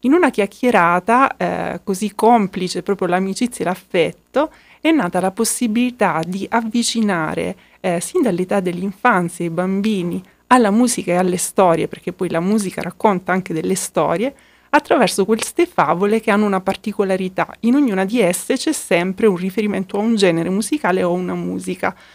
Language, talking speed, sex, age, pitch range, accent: Italian, 155 wpm, female, 30-49, 180-225 Hz, native